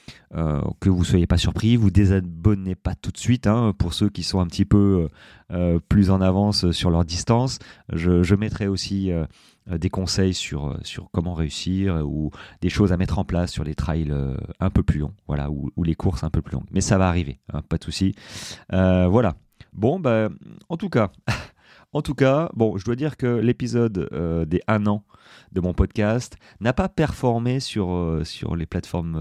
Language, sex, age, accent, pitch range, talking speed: French, male, 30-49, French, 80-100 Hz, 210 wpm